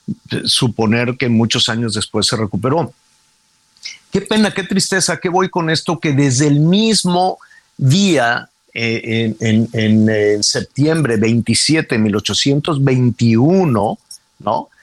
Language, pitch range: Spanish, 110-150 Hz